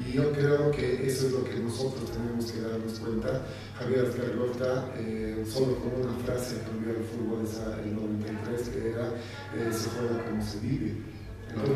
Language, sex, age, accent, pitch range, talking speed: Spanish, male, 40-59, Mexican, 115-135 Hz, 195 wpm